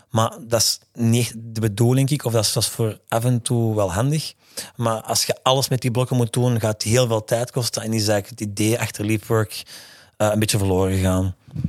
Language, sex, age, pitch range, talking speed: Dutch, male, 30-49, 105-125 Hz, 210 wpm